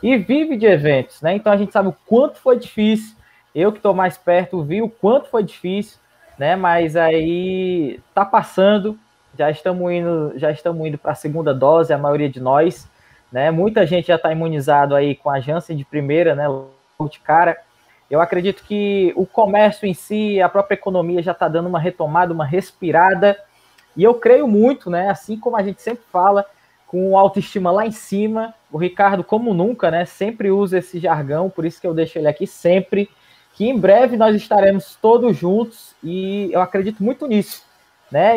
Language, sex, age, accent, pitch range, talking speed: Portuguese, male, 20-39, Brazilian, 170-210 Hz, 190 wpm